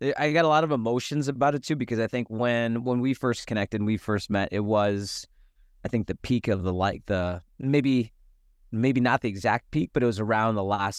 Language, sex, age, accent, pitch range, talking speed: English, male, 20-39, American, 95-115 Hz, 230 wpm